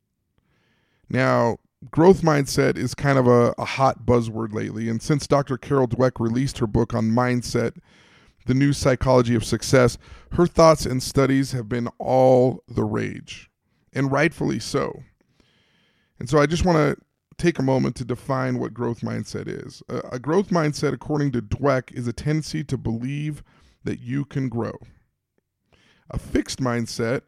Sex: male